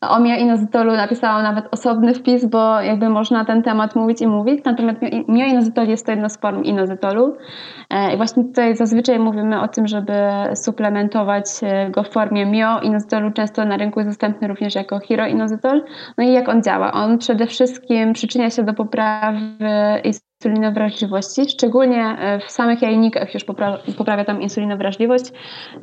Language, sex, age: Polish, female, 20-39